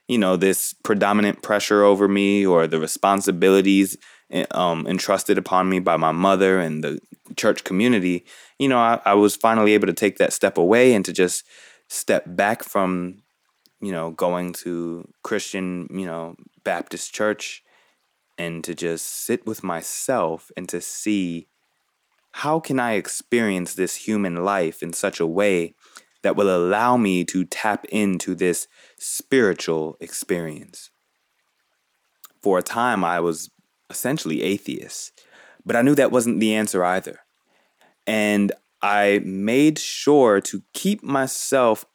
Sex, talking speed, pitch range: male, 145 wpm, 90-105 Hz